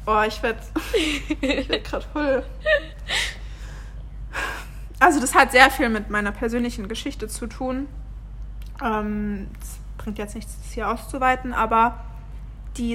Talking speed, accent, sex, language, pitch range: 125 wpm, German, female, German, 215-245 Hz